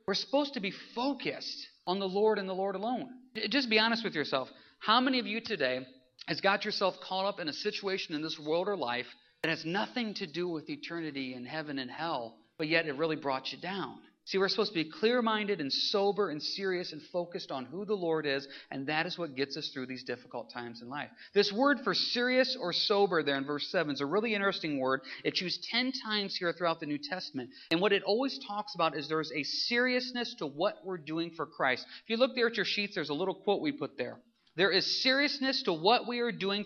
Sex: male